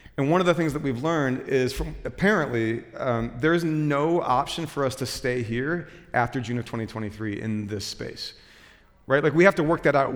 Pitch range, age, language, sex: 115-140 Hz, 40-59, English, male